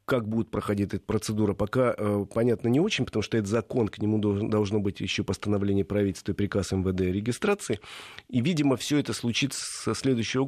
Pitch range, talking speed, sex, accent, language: 100-125 Hz, 195 wpm, male, native, Russian